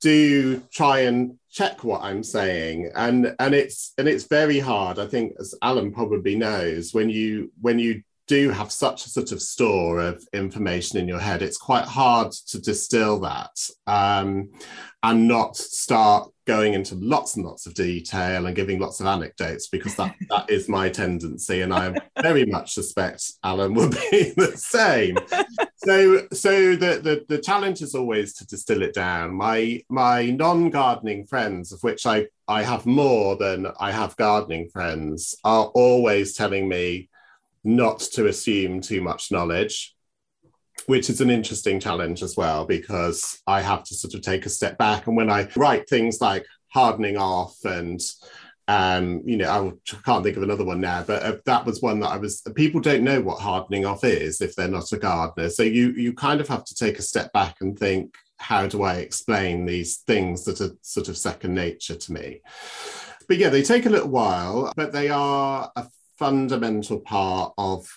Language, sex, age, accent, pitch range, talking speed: English, male, 40-59, British, 95-125 Hz, 185 wpm